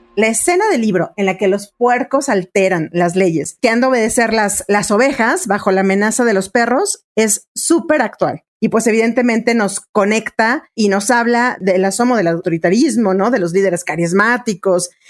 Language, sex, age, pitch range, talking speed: Spanish, female, 40-59, 195-245 Hz, 180 wpm